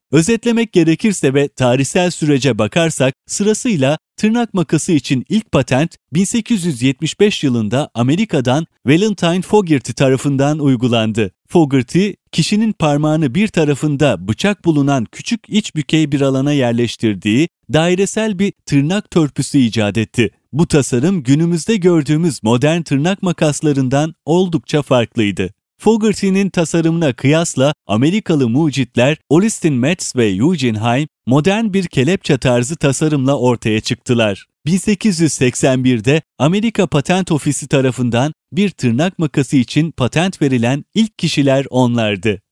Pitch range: 130-175 Hz